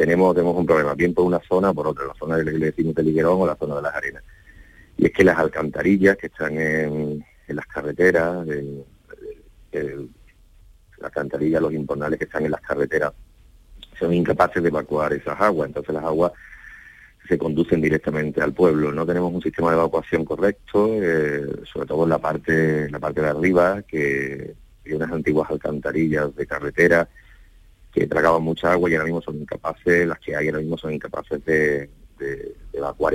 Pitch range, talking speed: 75-90 Hz, 185 wpm